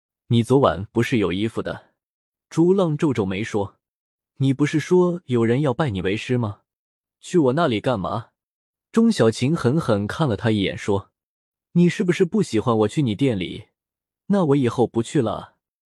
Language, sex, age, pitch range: Chinese, male, 20-39, 115-175 Hz